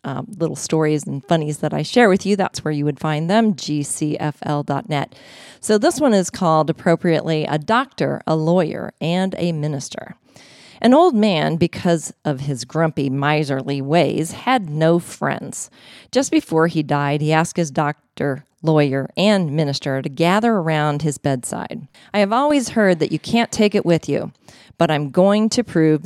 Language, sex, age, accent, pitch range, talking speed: English, female, 40-59, American, 150-200 Hz, 170 wpm